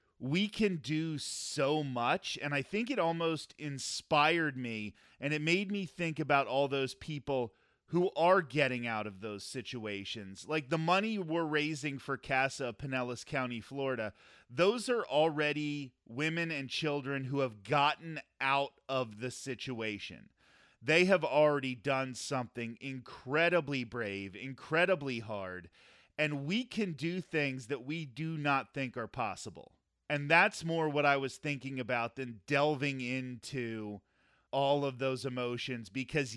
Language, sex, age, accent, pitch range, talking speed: English, male, 30-49, American, 125-155 Hz, 145 wpm